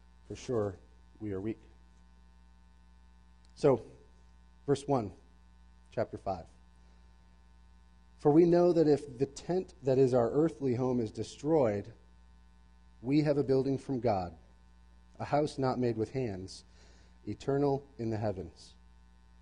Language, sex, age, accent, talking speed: English, male, 30-49, American, 125 wpm